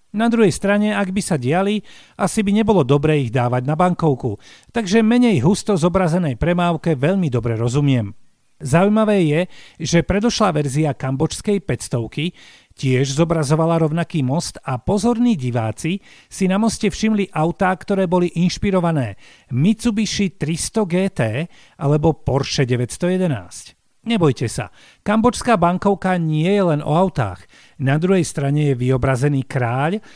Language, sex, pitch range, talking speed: Slovak, male, 140-195 Hz, 130 wpm